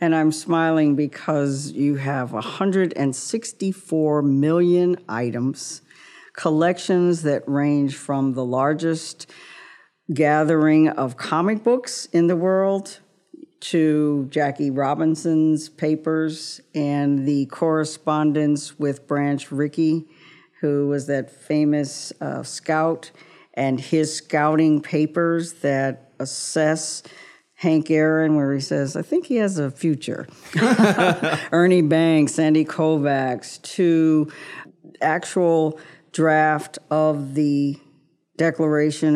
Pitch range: 140-160 Hz